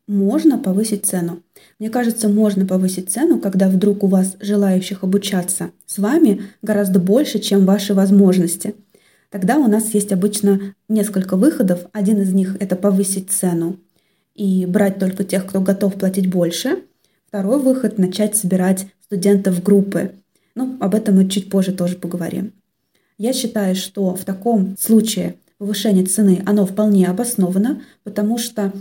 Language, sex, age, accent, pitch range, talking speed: Russian, female, 20-39, native, 190-215 Hz, 145 wpm